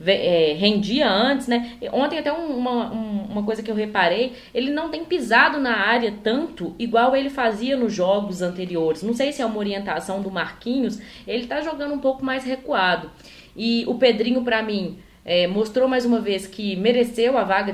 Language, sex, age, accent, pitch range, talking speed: Portuguese, female, 20-39, Brazilian, 195-245 Hz, 190 wpm